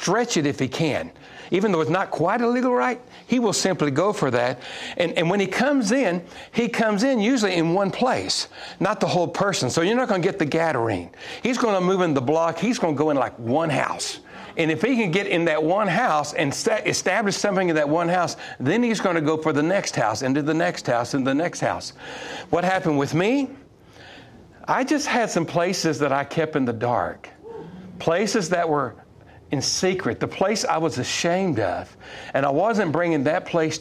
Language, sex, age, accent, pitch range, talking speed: English, male, 60-79, American, 145-205 Hz, 220 wpm